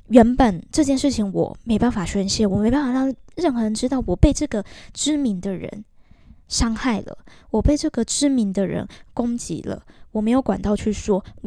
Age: 10-29